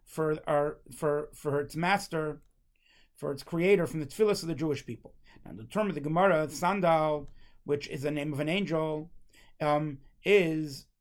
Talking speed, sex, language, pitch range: 180 wpm, male, English, 150-200 Hz